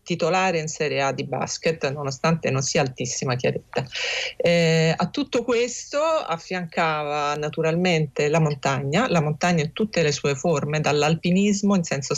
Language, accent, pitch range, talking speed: Italian, native, 150-190 Hz, 145 wpm